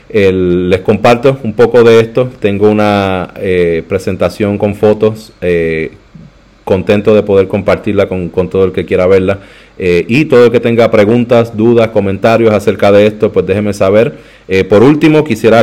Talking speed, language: 170 wpm, Spanish